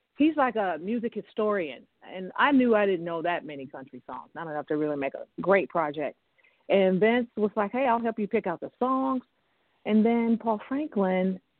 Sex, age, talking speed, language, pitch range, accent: female, 50-69, 200 wpm, English, 185-270 Hz, American